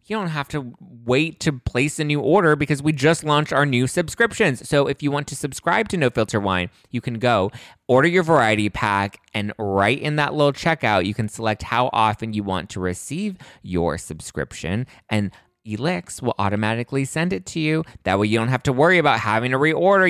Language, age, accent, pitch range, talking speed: English, 20-39, American, 100-145 Hz, 210 wpm